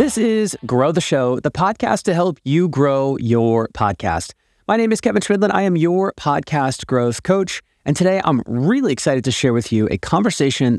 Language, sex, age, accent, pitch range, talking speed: English, male, 30-49, American, 115-160 Hz, 195 wpm